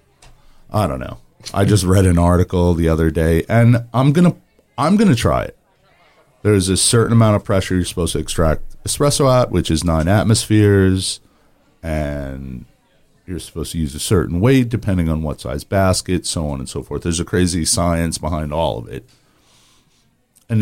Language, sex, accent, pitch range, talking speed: English, male, American, 80-105 Hz, 180 wpm